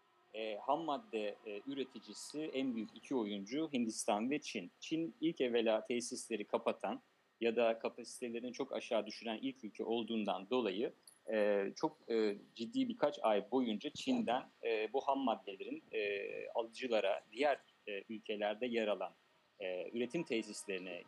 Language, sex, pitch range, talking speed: Turkish, male, 110-130 Hz, 115 wpm